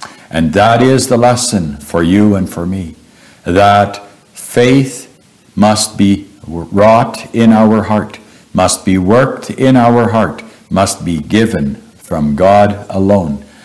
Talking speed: 130 wpm